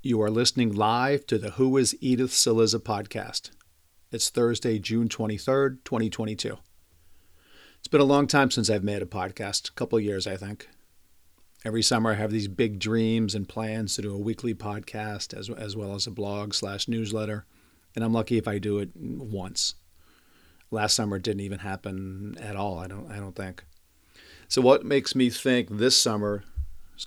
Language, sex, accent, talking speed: English, male, American, 180 wpm